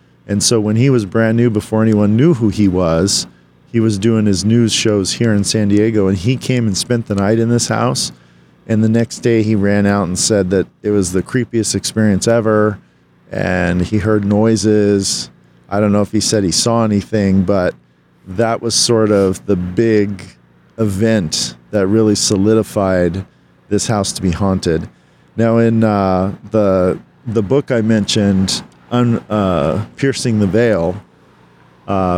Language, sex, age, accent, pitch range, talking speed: English, male, 40-59, American, 95-115 Hz, 170 wpm